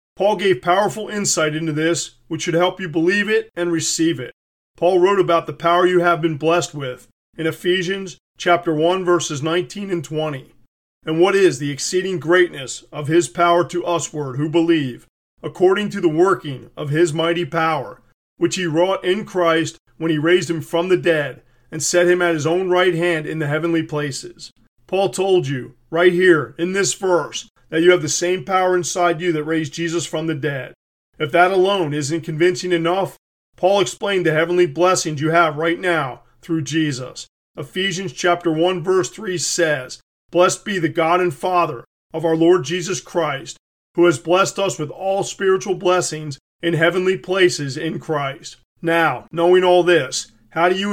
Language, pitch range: English, 160-180 Hz